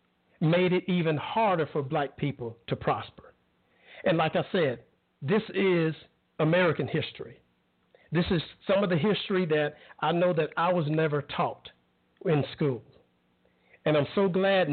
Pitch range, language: 140-190 Hz, English